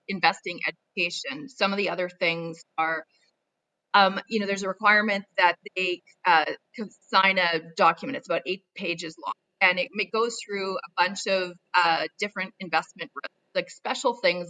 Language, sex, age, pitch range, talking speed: English, female, 30-49, 170-215 Hz, 160 wpm